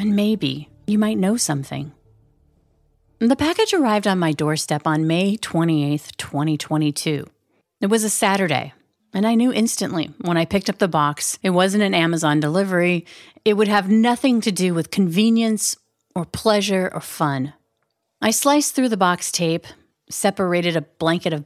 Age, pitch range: 30-49, 160-215 Hz